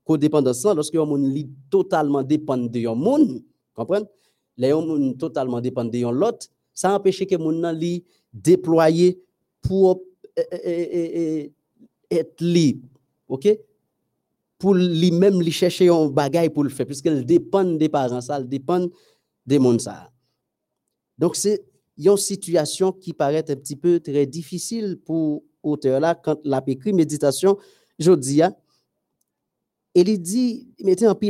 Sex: male